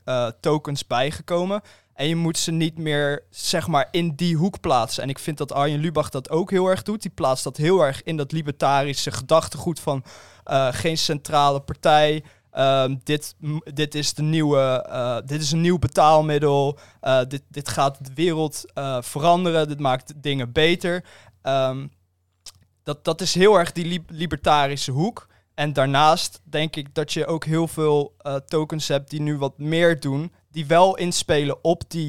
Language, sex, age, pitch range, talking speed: Dutch, male, 20-39, 140-165 Hz, 165 wpm